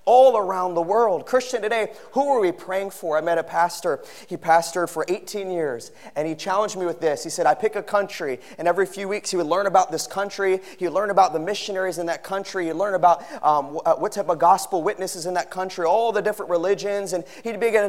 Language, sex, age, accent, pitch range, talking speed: English, male, 30-49, American, 155-200 Hz, 240 wpm